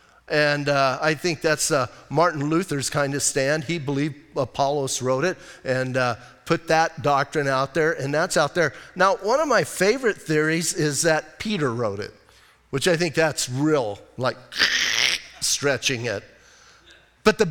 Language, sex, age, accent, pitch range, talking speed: English, male, 40-59, American, 145-195 Hz, 165 wpm